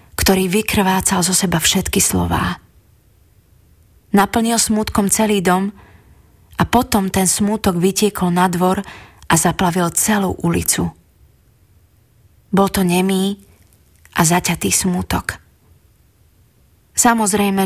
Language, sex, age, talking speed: Slovak, female, 20-39, 95 wpm